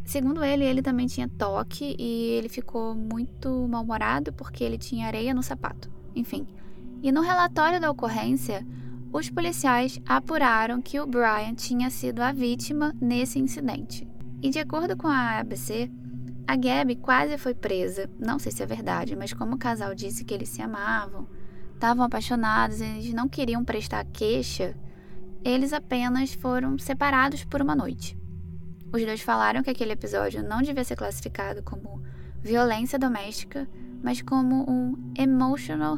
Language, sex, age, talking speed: Portuguese, female, 10-29, 155 wpm